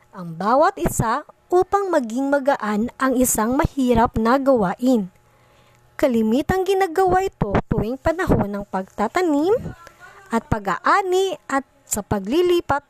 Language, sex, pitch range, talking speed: Filipino, male, 220-325 Hz, 105 wpm